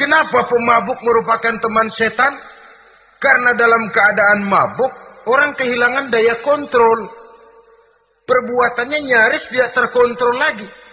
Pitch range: 195-250 Hz